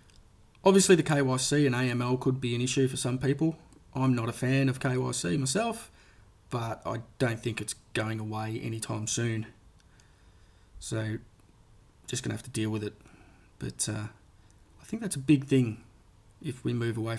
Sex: male